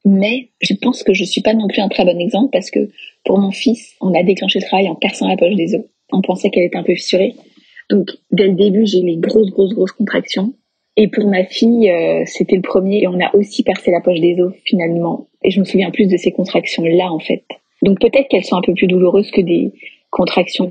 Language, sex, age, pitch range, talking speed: French, female, 30-49, 185-215 Hz, 245 wpm